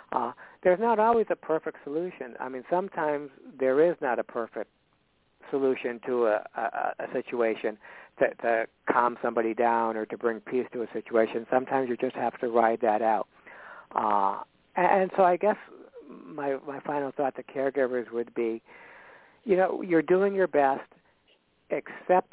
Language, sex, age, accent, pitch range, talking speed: English, male, 60-79, American, 125-170 Hz, 160 wpm